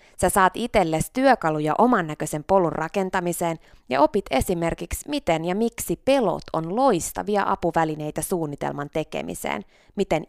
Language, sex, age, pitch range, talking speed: Finnish, female, 20-39, 155-205 Hz, 120 wpm